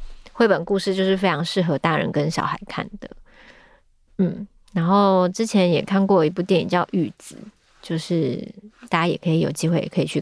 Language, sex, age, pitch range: Chinese, female, 20-39, 170-210 Hz